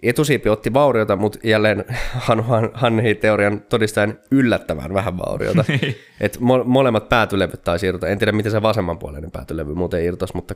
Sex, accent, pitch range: male, native, 90-115 Hz